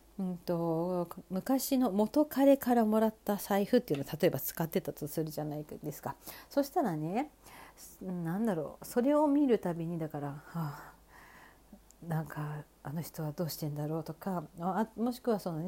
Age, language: 40-59, Japanese